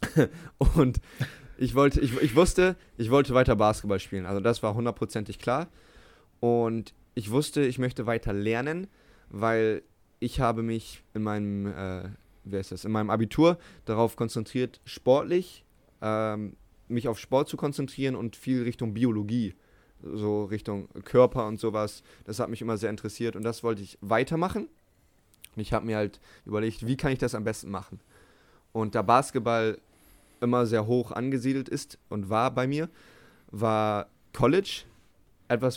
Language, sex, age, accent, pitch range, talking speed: German, male, 20-39, German, 105-125 Hz, 155 wpm